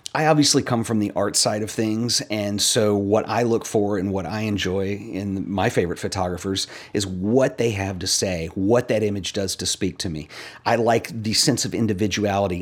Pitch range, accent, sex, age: 95-115 Hz, American, male, 40-59